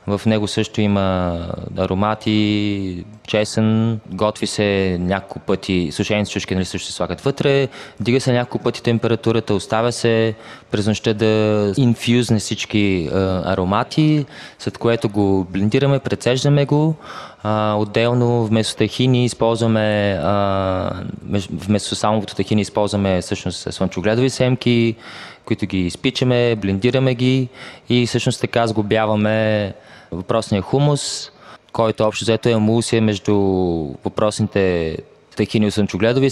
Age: 20-39